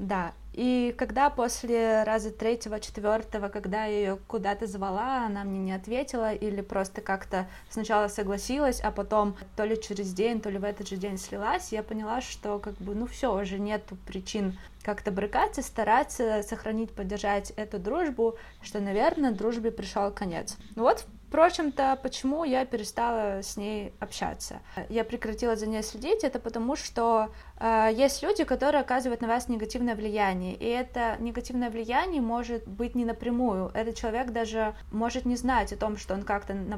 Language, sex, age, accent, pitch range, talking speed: Russian, female, 20-39, native, 205-235 Hz, 165 wpm